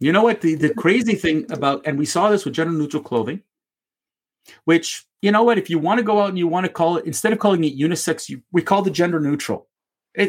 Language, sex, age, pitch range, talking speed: English, male, 40-59, 165-230 Hz, 250 wpm